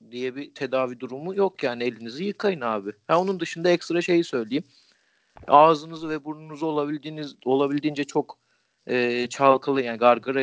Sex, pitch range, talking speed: male, 120-150 Hz, 145 wpm